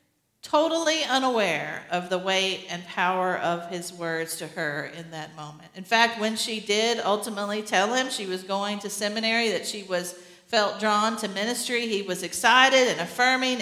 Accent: American